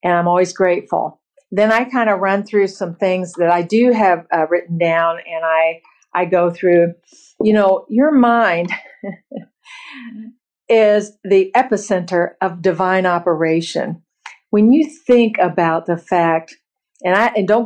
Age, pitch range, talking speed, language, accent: 50-69, 185-240 Hz, 150 wpm, English, American